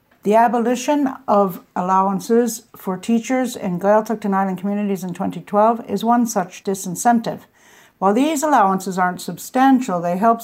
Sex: female